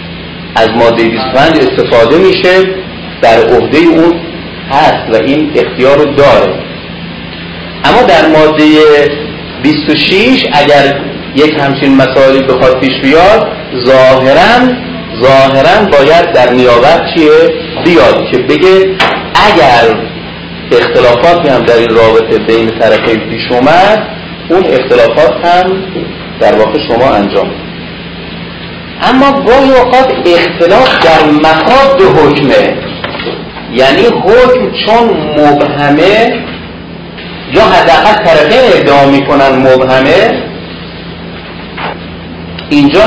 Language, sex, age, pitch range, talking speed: Persian, male, 40-59, 130-190 Hz, 95 wpm